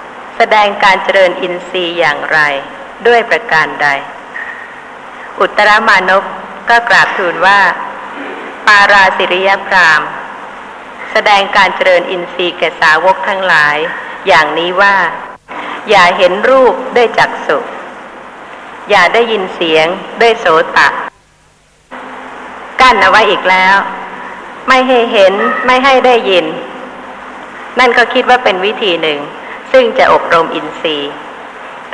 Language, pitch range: Thai, 185-260 Hz